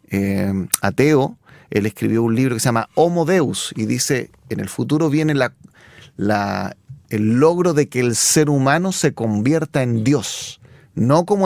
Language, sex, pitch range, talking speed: Spanish, male, 120-160 Hz, 155 wpm